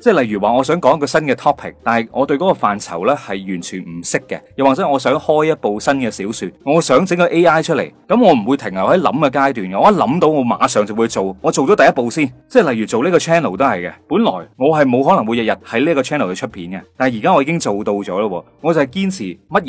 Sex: male